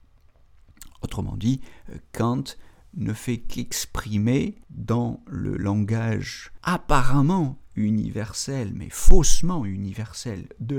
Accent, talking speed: French, 85 wpm